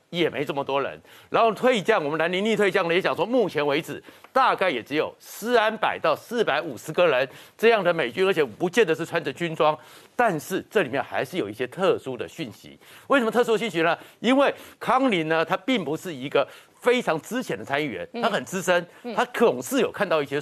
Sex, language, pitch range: male, Chinese, 170-230 Hz